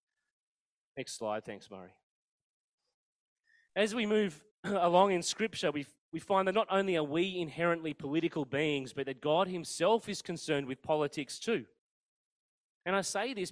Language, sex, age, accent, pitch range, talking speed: English, male, 30-49, Australian, 140-175 Hz, 150 wpm